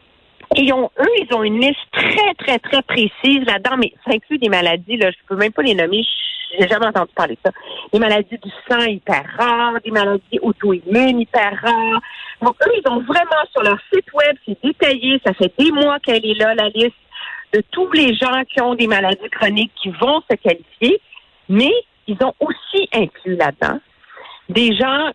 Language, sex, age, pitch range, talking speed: French, female, 50-69, 200-285 Hz, 200 wpm